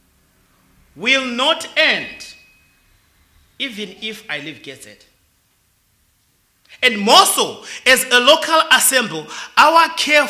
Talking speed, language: 100 wpm, English